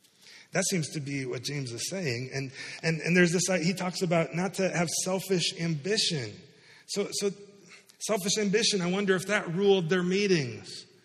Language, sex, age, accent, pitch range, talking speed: English, male, 30-49, American, 150-200 Hz, 175 wpm